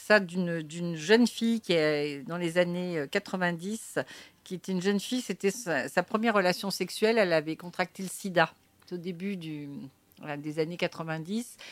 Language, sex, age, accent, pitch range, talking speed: French, female, 50-69, French, 170-215 Hz, 175 wpm